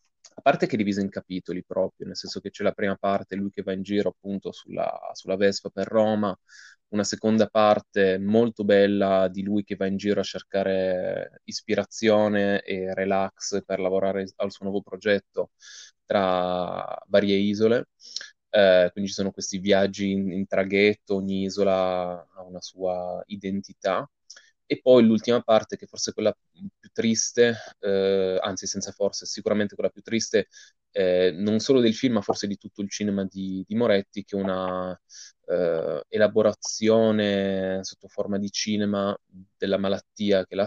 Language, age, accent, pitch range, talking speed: Italian, 20-39, native, 95-105 Hz, 160 wpm